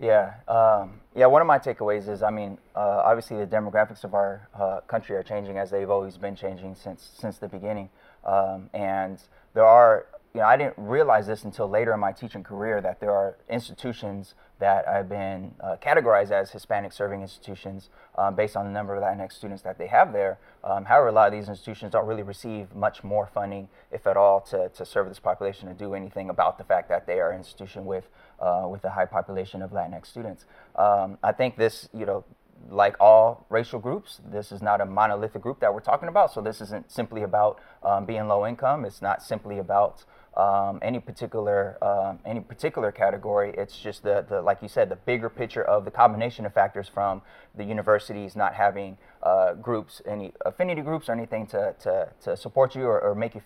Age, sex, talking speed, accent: 20-39, male, 210 wpm, American